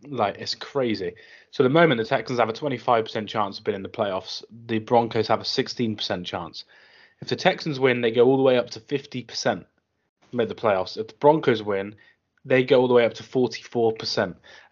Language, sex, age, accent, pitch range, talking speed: English, male, 20-39, British, 105-135 Hz, 210 wpm